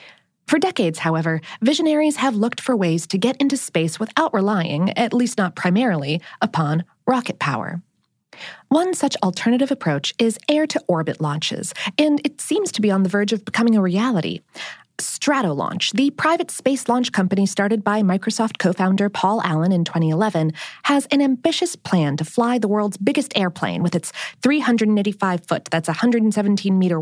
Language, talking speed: English, 155 wpm